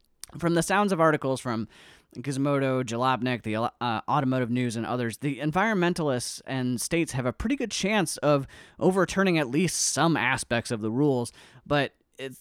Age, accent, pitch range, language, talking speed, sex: 30-49, American, 120-155 Hz, English, 165 wpm, male